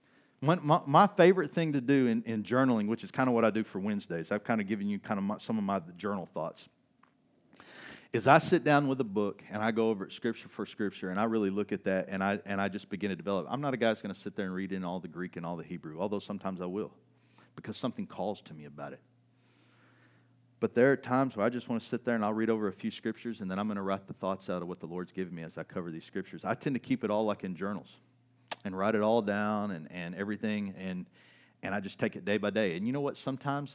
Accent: American